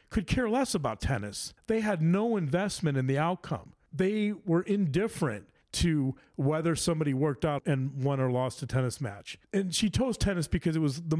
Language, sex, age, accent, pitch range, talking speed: English, male, 40-59, American, 125-155 Hz, 190 wpm